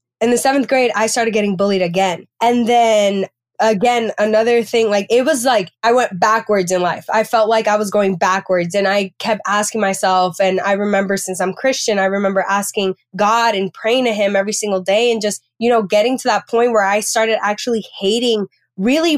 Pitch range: 200-245 Hz